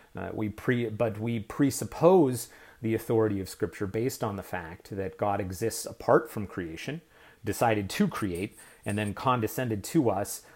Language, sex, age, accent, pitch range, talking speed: English, male, 30-49, American, 100-120 Hz, 160 wpm